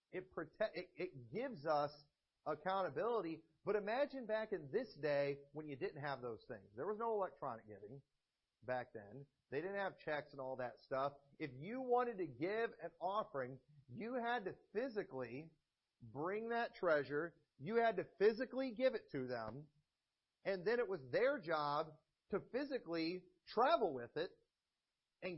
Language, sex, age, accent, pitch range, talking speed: English, male, 40-59, American, 155-220 Hz, 160 wpm